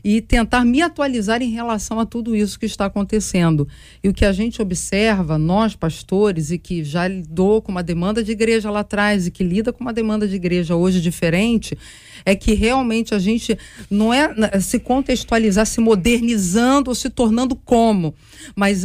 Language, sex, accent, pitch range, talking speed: Portuguese, female, Brazilian, 190-240 Hz, 180 wpm